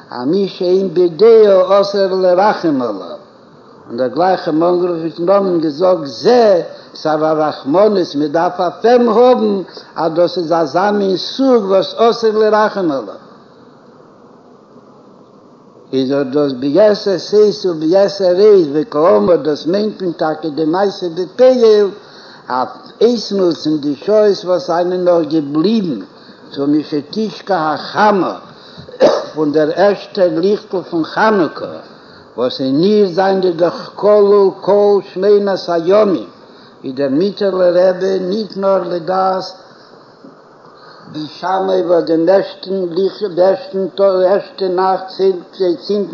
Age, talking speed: 60-79, 85 wpm